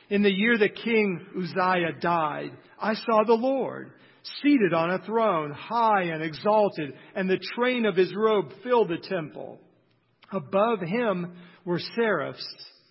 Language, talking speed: English, 145 wpm